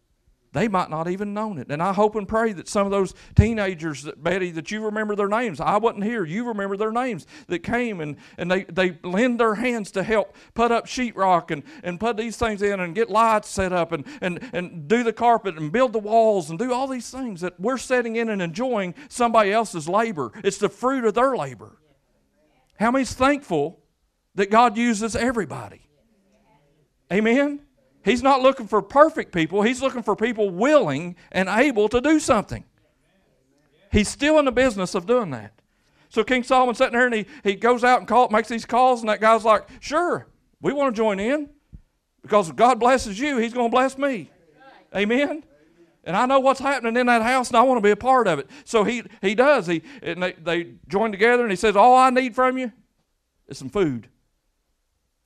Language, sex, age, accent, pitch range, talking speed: English, male, 50-69, American, 190-250 Hz, 205 wpm